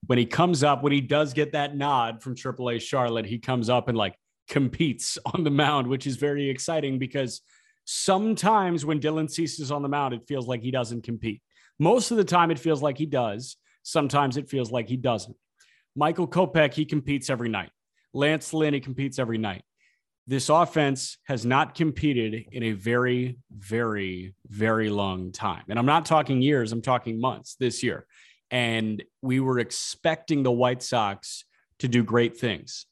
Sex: male